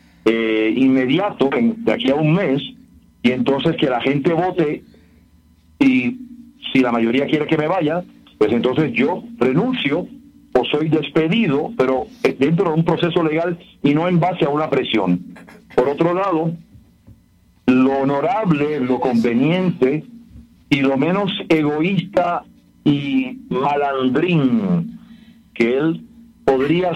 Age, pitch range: 50-69, 130-175 Hz